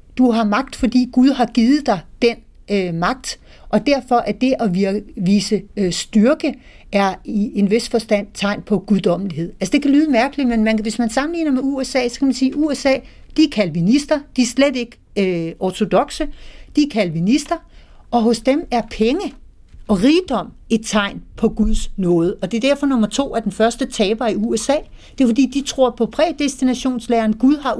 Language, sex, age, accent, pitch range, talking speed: Danish, female, 60-79, native, 210-265 Hz, 195 wpm